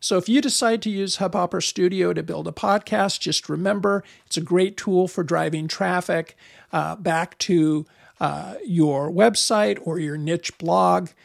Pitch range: 160-185 Hz